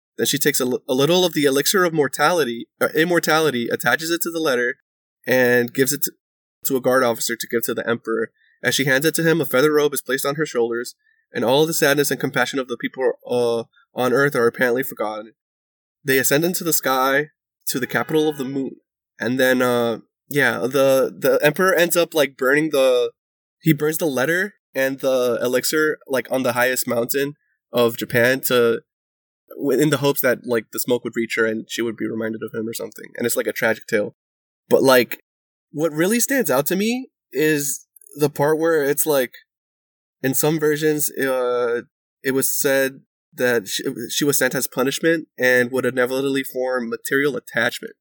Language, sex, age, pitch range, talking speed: English, male, 20-39, 120-150 Hz, 195 wpm